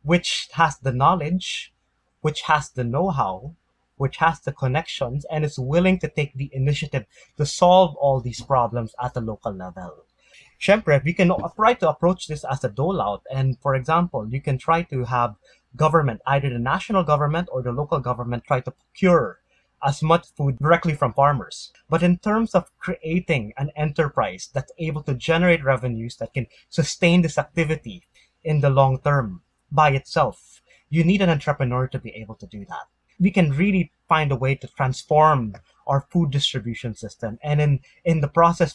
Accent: Filipino